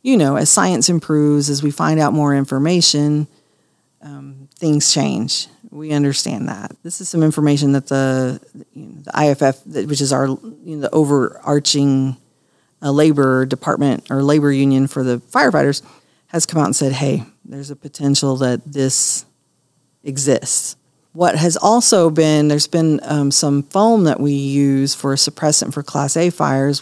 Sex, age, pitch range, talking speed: female, 40-59, 140-160 Hz, 165 wpm